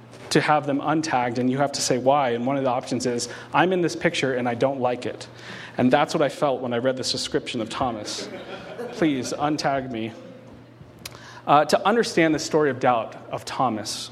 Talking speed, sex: 210 wpm, male